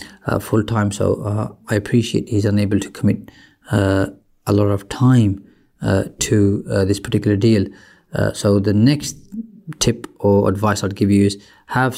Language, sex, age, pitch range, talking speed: English, male, 30-49, 105-120 Hz, 170 wpm